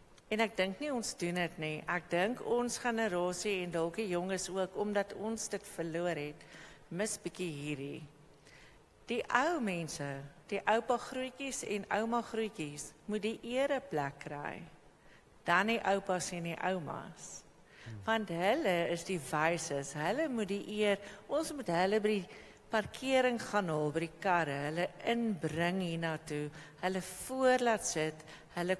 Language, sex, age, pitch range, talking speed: English, female, 50-69, 165-230 Hz, 150 wpm